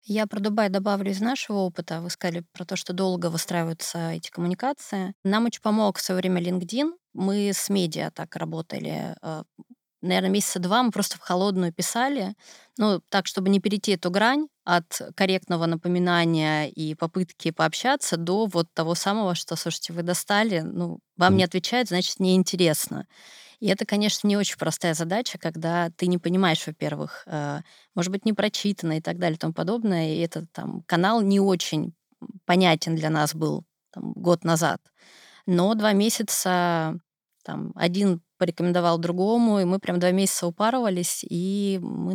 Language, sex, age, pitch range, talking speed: Russian, female, 20-39, 170-200 Hz, 160 wpm